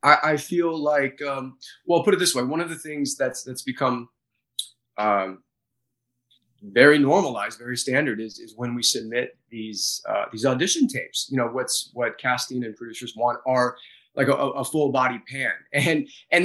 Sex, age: male, 30-49